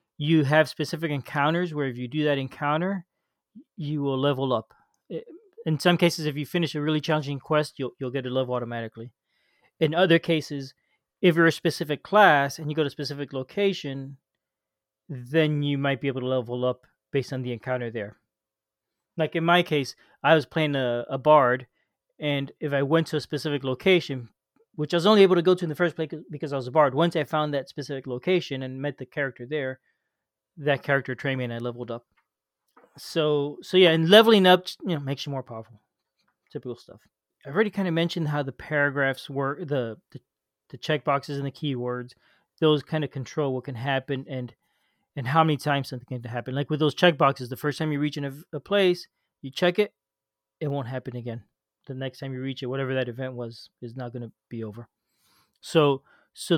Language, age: English, 30-49